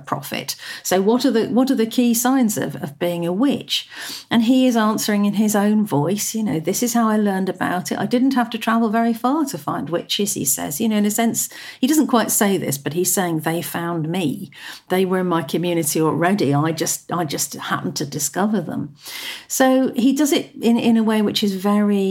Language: English